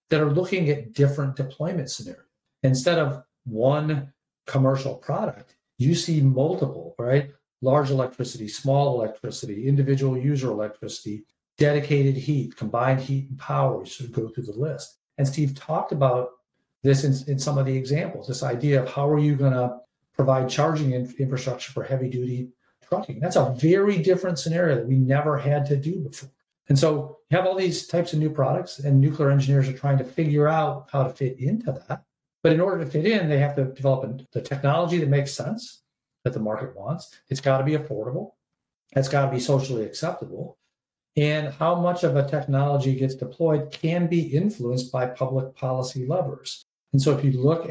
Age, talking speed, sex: 50-69, 185 wpm, male